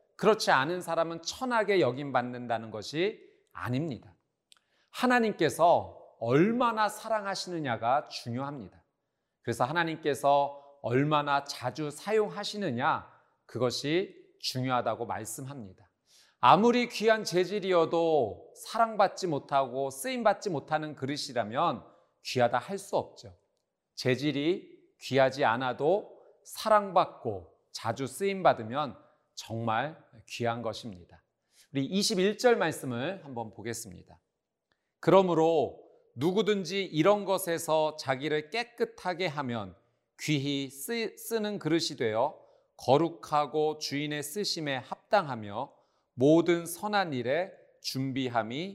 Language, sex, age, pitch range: Korean, male, 40-59, 135-210 Hz